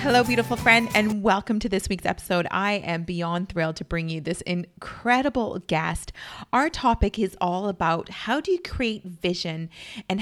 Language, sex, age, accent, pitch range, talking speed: English, female, 30-49, American, 175-220 Hz, 175 wpm